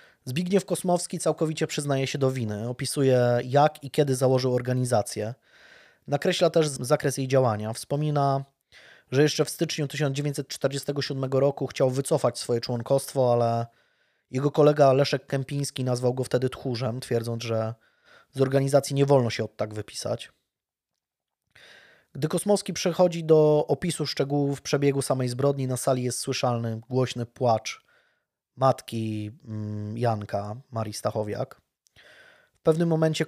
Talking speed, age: 125 wpm, 20-39